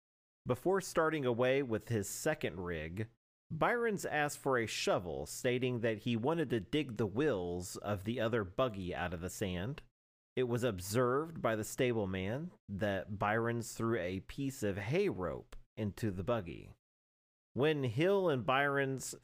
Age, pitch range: 40-59, 95-135 Hz